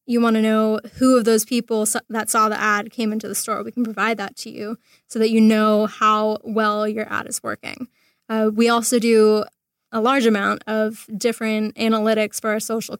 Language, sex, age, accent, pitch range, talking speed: English, female, 10-29, American, 215-230 Hz, 210 wpm